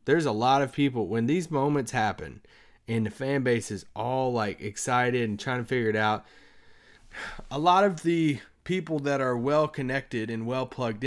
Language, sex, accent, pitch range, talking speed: English, male, American, 105-135 Hz, 180 wpm